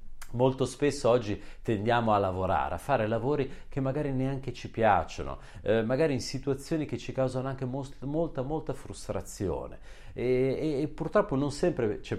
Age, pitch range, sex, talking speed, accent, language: 40-59, 105-145 Hz, male, 165 wpm, native, Italian